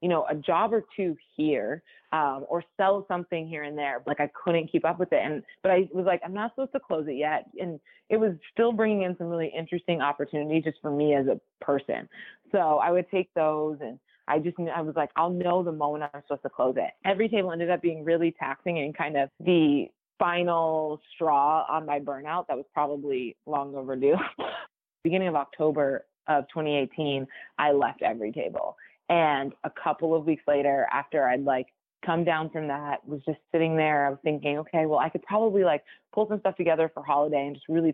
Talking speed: 210 wpm